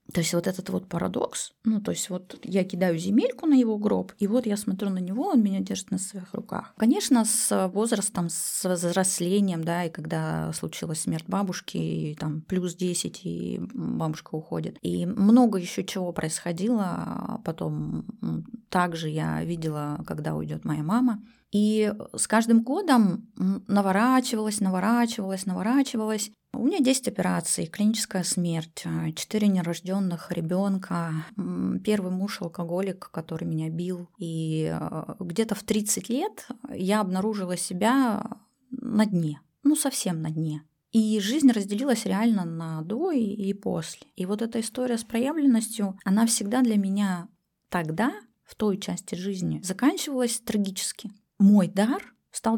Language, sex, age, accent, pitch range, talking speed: Russian, female, 20-39, native, 175-225 Hz, 140 wpm